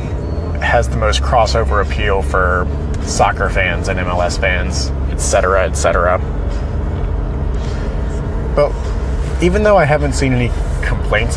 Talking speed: 110 wpm